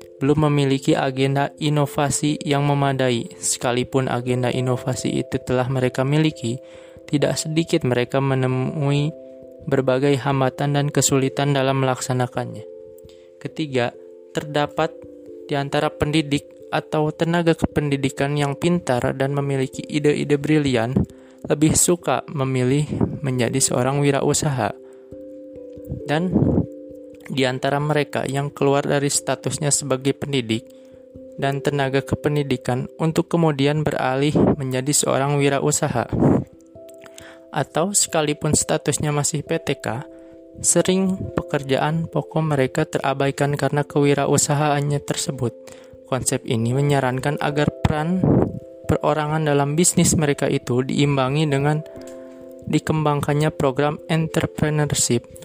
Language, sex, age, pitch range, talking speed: Indonesian, male, 20-39, 130-155 Hz, 95 wpm